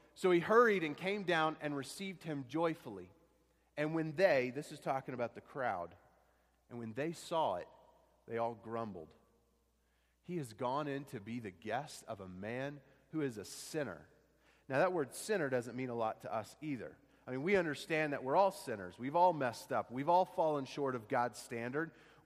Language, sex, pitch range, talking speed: English, male, 120-165 Hz, 195 wpm